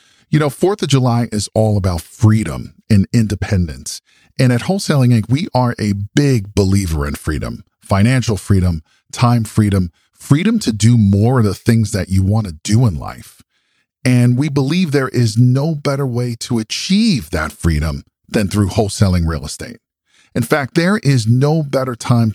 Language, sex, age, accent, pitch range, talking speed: English, male, 40-59, American, 95-130 Hz, 170 wpm